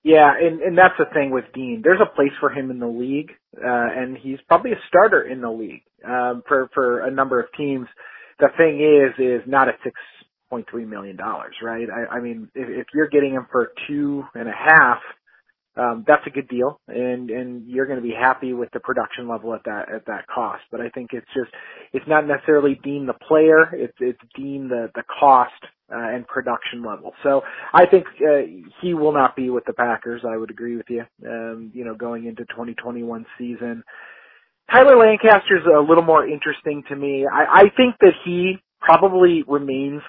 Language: English